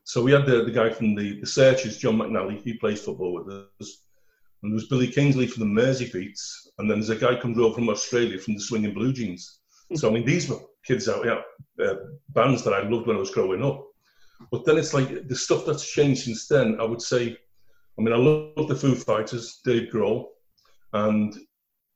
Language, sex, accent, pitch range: English, male, British, 110-150 Hz